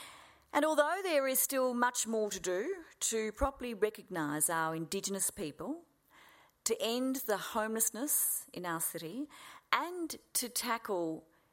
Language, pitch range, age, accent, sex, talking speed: English, 165-265 Hz, 40-59, Australian, female, 130 wpm